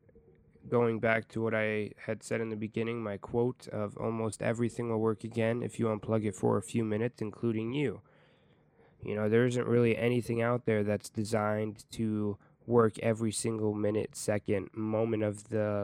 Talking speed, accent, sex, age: 180 wpm, American, male, 20-39